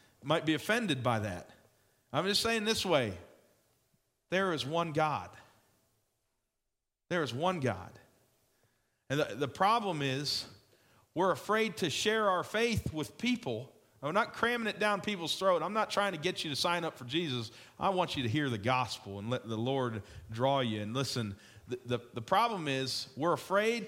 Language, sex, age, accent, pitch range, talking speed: English, male, 40-59, American, 110-155 Hz, 180 wpm